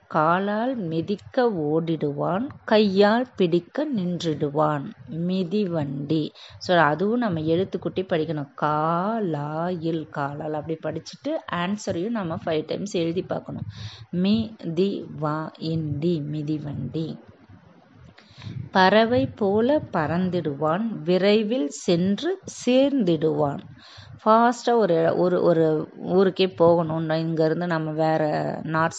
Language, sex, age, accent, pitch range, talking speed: Tamil, female, 20-39, native, 155-190 Hz, 75 wpm